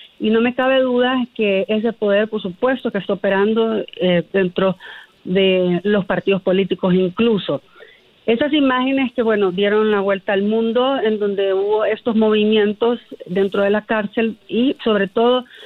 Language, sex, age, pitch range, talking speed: Spanish, female, 40-59, 195-230 Hz, 155 wpm